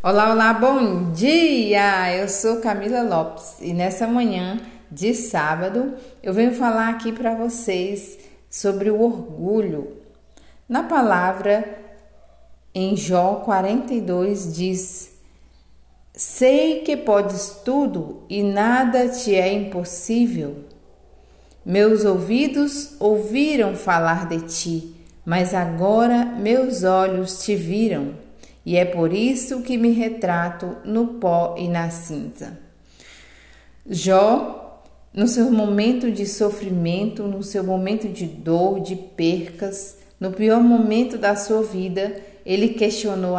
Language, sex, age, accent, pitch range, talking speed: Portuguese, female, 40-59, Brazilian, 175-225 Hz, 115 wpm